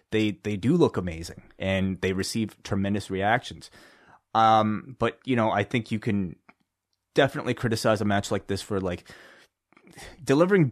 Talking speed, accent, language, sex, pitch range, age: 150 wpm, American, English, male, 100-130 Hz, 20-39